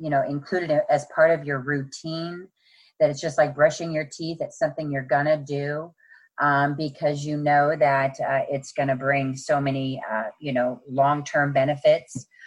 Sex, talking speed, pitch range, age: female, 180 wpm, 135-175 Hz, 30-49